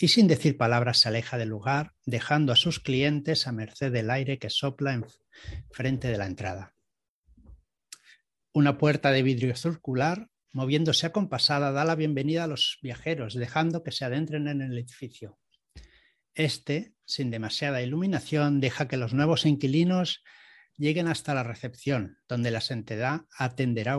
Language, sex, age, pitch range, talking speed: Spanish, male, 60-79, 120-150 Hz, 155 wpm